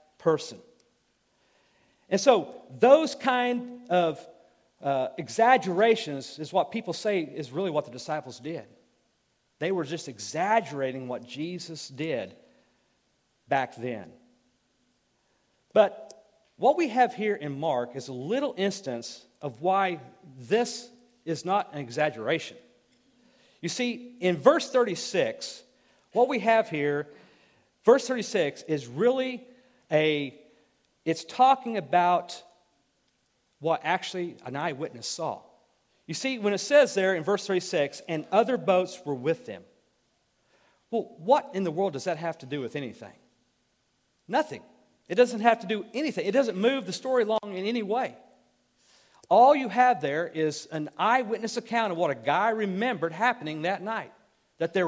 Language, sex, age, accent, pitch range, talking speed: English, male, 50-69, American, 155-240 Hz, 140 wpm